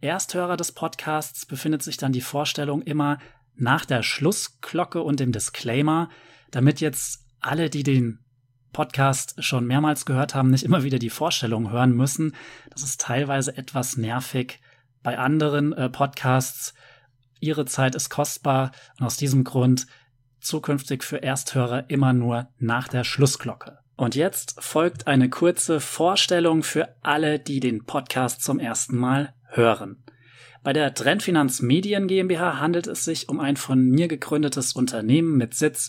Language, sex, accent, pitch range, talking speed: German, male, German, 125-150 Hz, 145 wpm